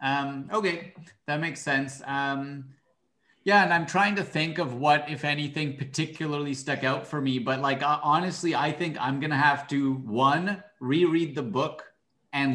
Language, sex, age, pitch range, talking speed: English, male, 30-49, 130-155 Hz, 170 wpm